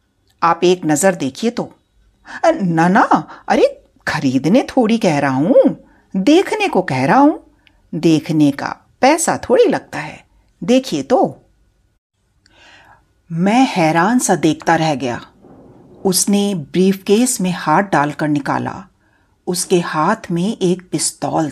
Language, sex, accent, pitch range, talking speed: Hindi, female, native, 150-215 Hz, 120 wpm